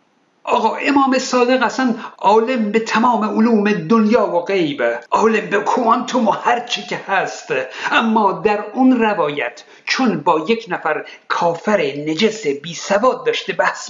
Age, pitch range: 50-69, 170-235 Hz